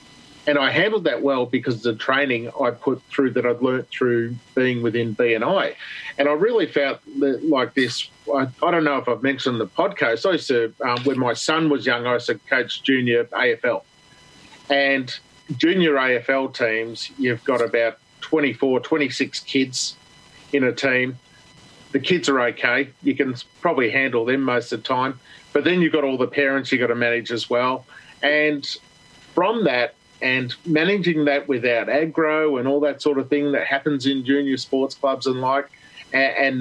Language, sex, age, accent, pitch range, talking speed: English, male, 40-59, Australian, 125-145 Hz, 185 wpm